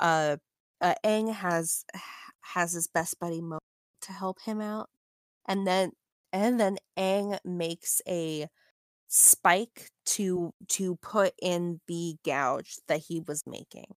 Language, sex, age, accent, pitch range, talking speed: English, female, 20-39, American, 165-190 Hz, 135 wpm